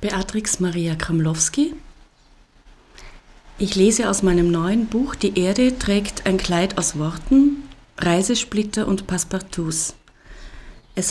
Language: German